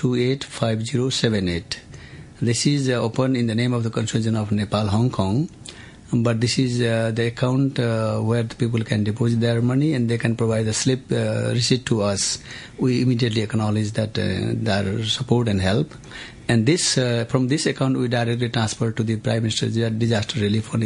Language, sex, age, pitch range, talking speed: English, male, 60-79, 110-125 Hz, 180 wpm